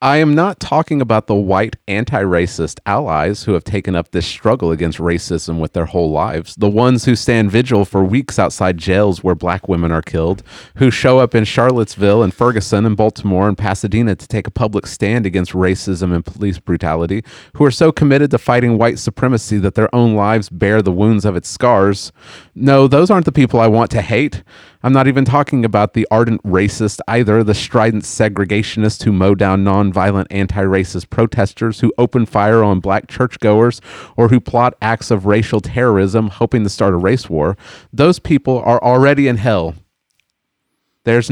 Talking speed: 185 wpm